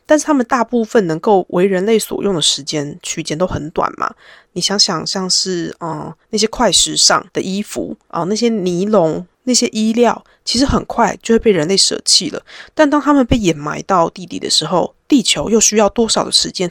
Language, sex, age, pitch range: Chinese, female, 20-39, 175-235 Hz